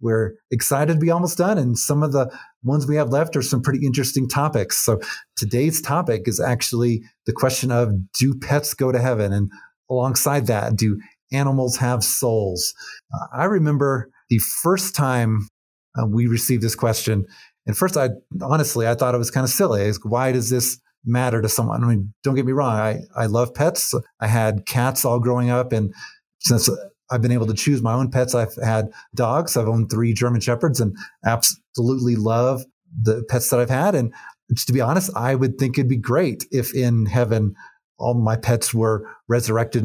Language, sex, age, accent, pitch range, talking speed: English, male, 30-49, American, 110-135 Hz, 195 wpm